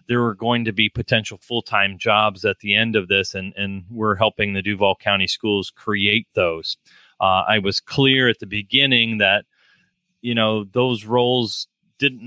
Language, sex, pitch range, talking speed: English, male, 100-115 Hz, 175 wpm